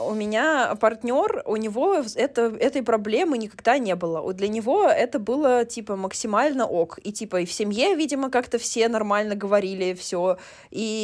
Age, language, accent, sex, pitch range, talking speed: 20-39, Russian, native, female, 205-250 Hz, 160 wpm